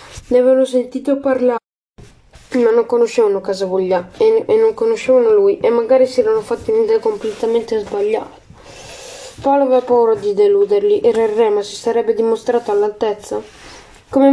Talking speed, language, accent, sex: 145 wpm, Italian, native, female